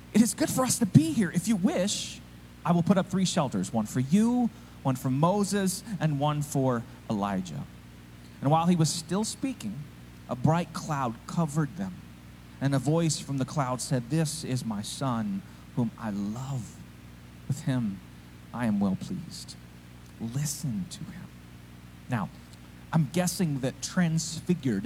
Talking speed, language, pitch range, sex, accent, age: 160 wpm, English, 110-175 Hz, male, American, 30-49